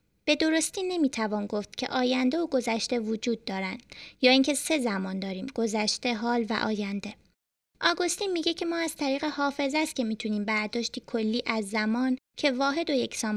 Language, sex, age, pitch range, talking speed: Persian, female, 20-39, 235-290 Hz, 165 wpm